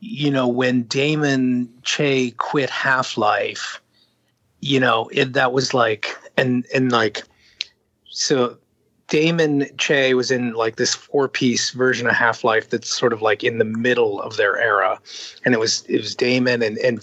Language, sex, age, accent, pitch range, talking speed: English, male, 30-49, American, 120-145 Hz, 160 wpm